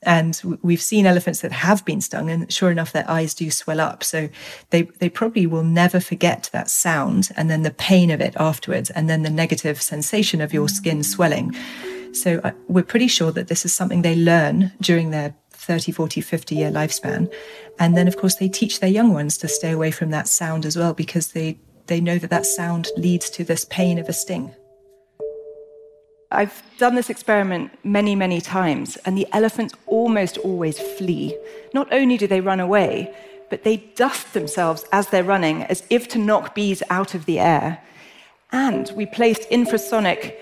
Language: English